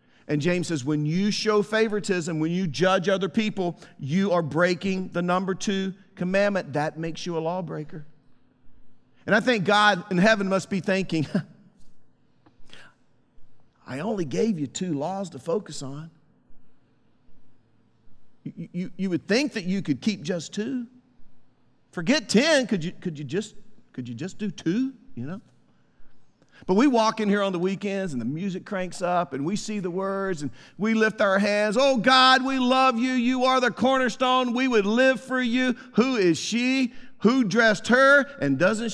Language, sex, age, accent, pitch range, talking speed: English, male, 50-69, American, 170-230 Hz, 175 wpm